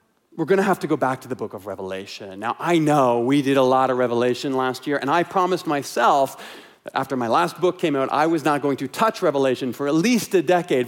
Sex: male